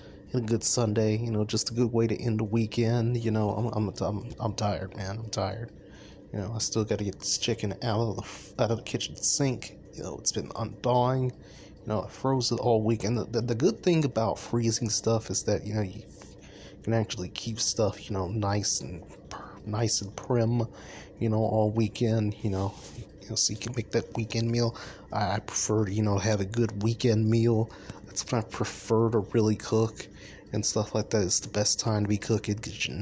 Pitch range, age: 100-115 Hz, 20-39